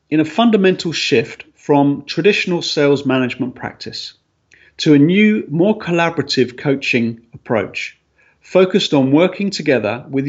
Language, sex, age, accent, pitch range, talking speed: English, male, 40-59, British, 125-175 Hz, 120 wpm